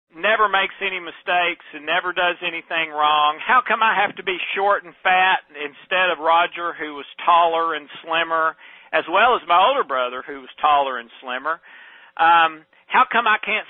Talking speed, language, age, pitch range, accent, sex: 185 wpm, English, 40-59, 165-205 Hz, American, male